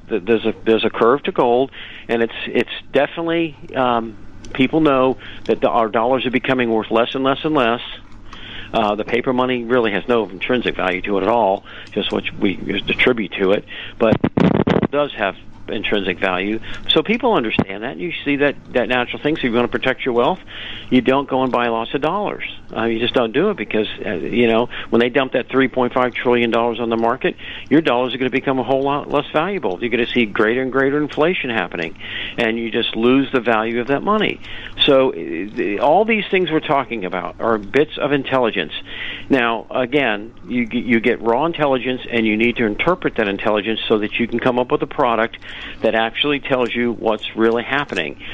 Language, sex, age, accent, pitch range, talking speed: English, male, 50-69, American, 110-135 Hz, 210 wpm